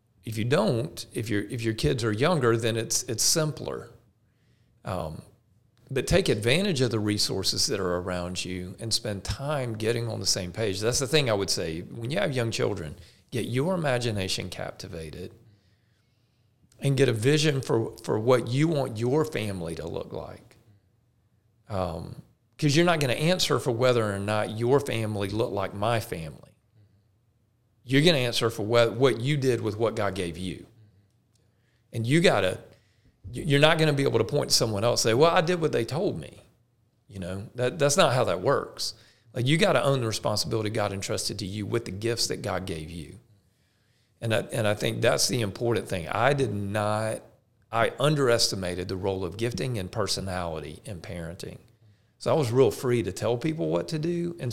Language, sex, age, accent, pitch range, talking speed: English, male, 40-59, American, 105-130 Hz, 190 wpm